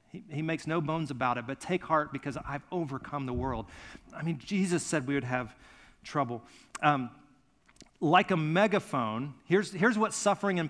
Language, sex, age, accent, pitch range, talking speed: English, male, 40-59, American, 120-165 Hz, 180 wpm